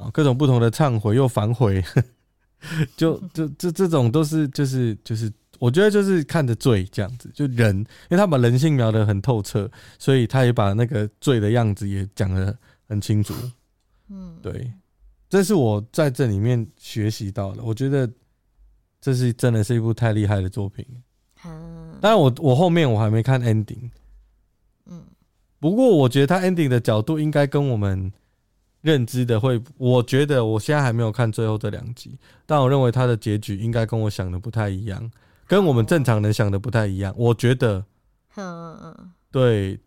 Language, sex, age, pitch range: Chinese, male, 20-39, 105-140 Hz